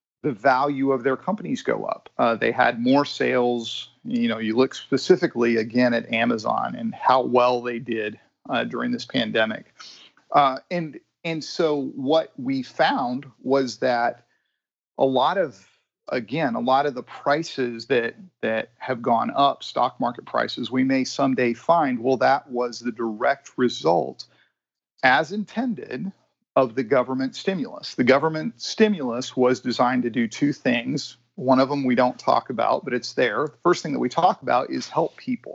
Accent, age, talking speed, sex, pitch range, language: American, 40-59, 170 wpm, male, 125-155 Hz, English